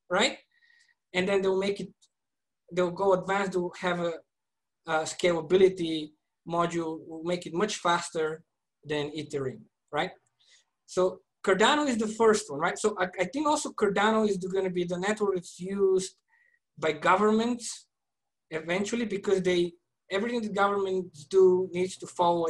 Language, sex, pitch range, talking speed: English, male, 175-220 Hz, 150 wpm